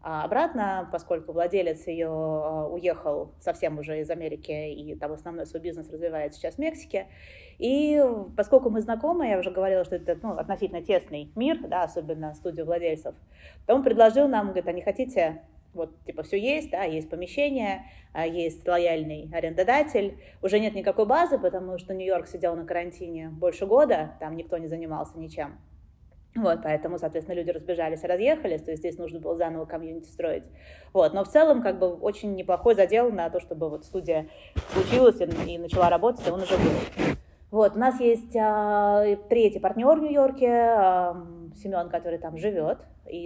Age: 20-39